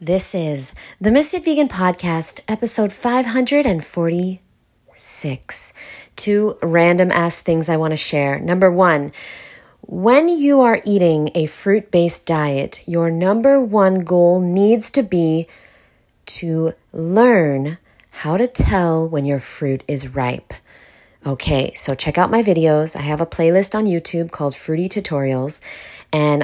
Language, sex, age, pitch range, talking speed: English, female, 30-49, 155-205 Hz, 130 wpm